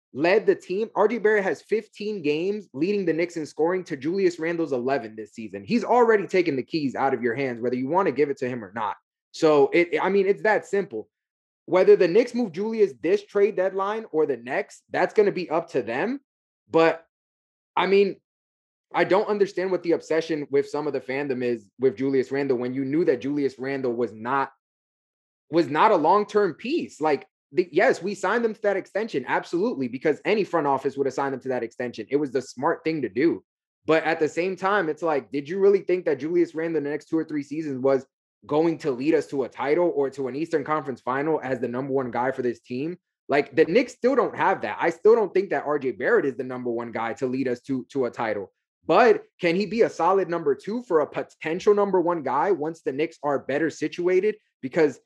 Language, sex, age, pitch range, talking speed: English, male, 20-39, 135-210 Hz, 230 wpm